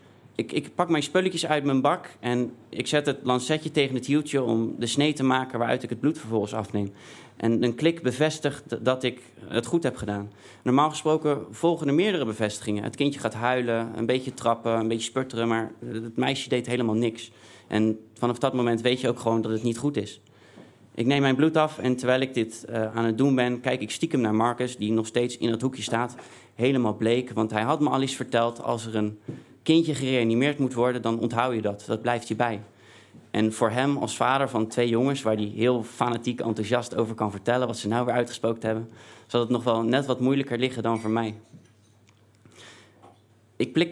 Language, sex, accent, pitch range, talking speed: Dutch, male, Dutch, 110-130 Hz, 215 wpm